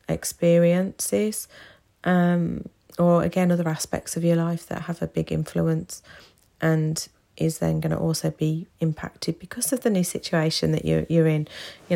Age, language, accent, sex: 30-49, English, British, female